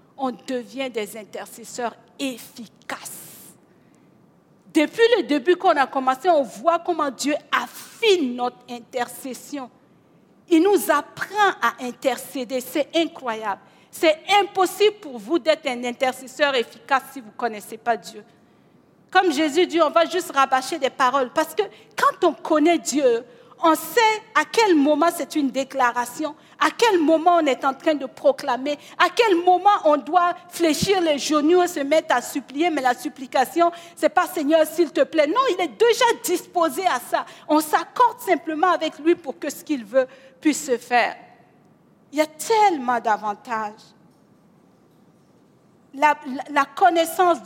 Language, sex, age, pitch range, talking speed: French, female, 50-69, 250-340 Hz, 160 wpm